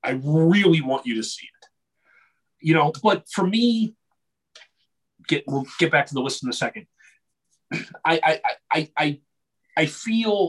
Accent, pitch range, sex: American, 125-170 Hz, male